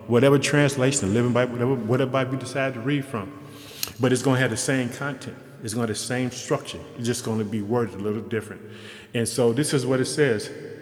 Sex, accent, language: male, American, English